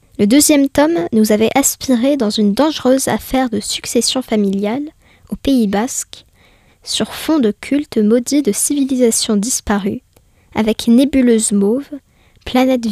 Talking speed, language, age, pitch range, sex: 130 wpm, French, 20-39, 220-275 Hz, female